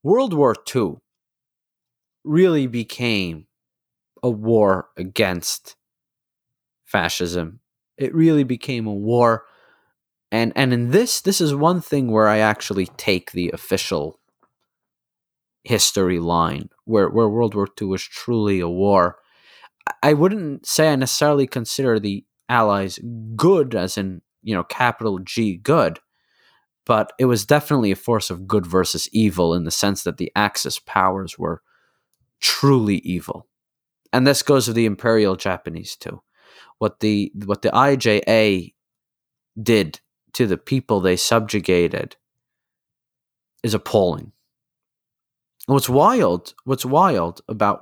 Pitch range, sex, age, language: 95-135 Hz, male, 30-49, English